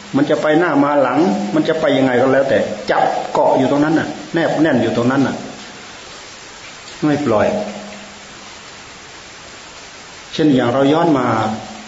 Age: 30-49